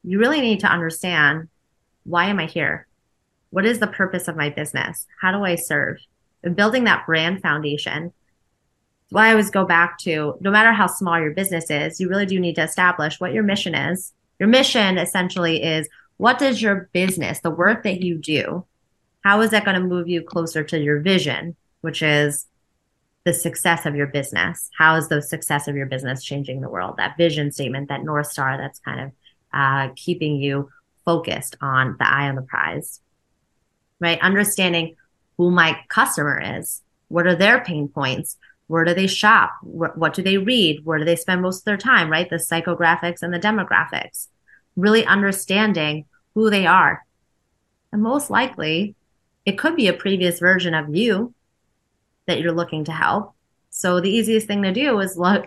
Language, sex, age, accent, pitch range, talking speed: English, female, 20-39, American, 155-195 Hz, 185 wpm